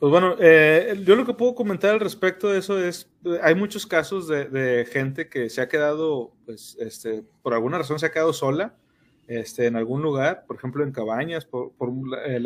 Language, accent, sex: Spanish, Mexican, male